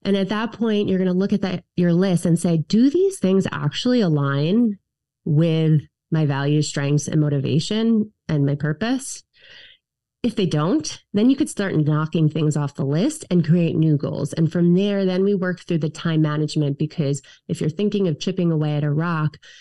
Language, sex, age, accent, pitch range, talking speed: English, female, 30-49, American, 150-190 Hz, 195 wpm